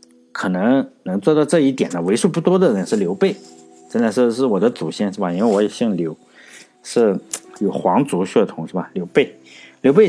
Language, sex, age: Chinese, male, 50-69